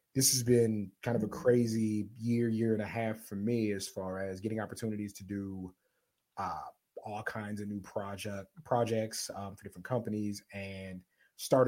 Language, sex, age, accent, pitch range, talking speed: English, male, 30-49, American, 100-120 Hz, 175 wpm